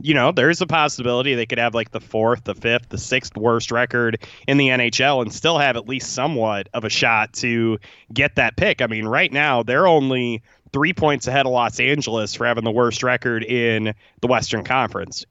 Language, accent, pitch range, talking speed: English, American, 115-140 Hz, 215 wpm